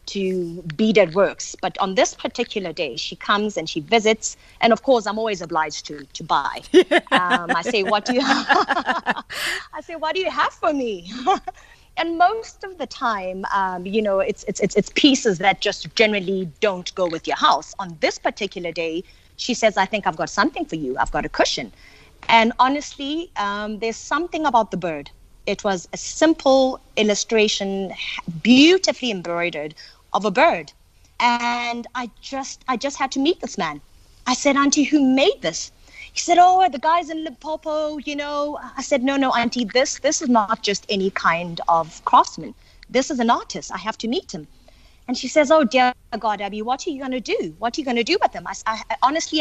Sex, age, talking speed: female, 30-49, 200 wpm